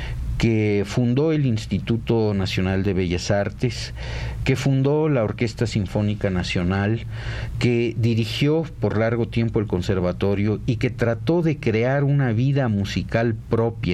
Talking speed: 130 wpm